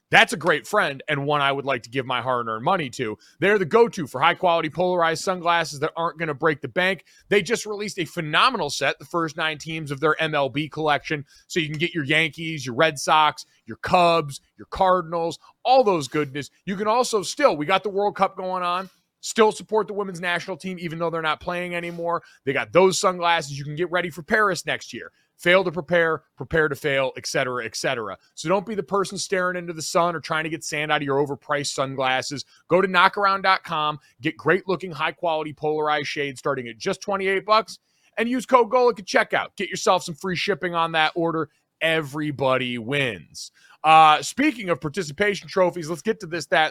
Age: 30-49